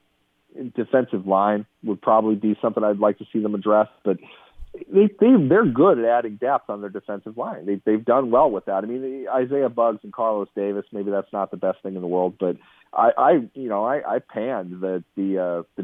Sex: male